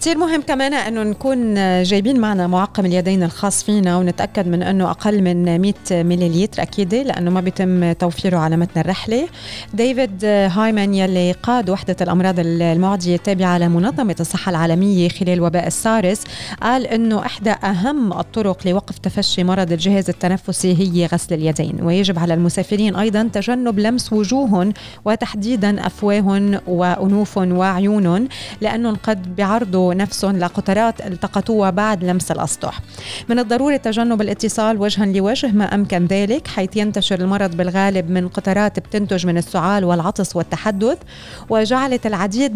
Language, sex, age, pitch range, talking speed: Arabic, female, 30-49, 180-215 Hz, 135 wpm